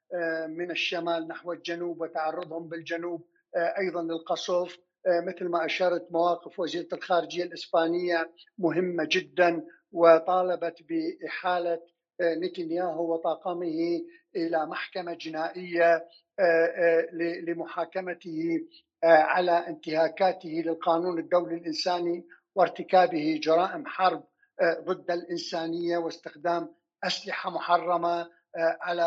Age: 50-69